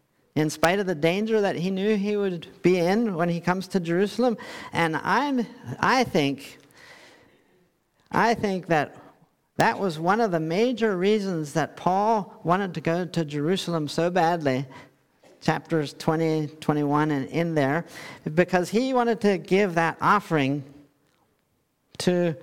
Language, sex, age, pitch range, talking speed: English, male, 50-69, 155-205 Hz, 145 wpm